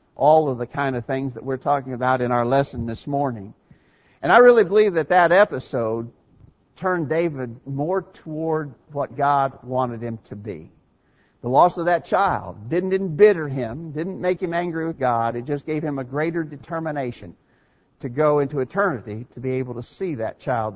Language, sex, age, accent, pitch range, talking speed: English, male, 50-69, American, 125-165 Hz, 185 wpm